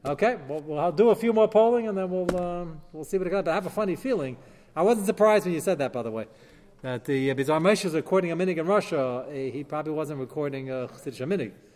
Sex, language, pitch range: male, English, 140-210 Hz